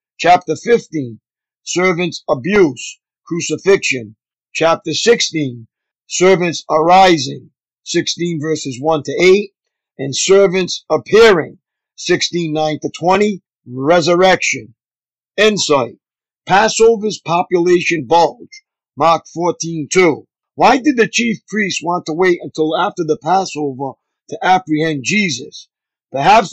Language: English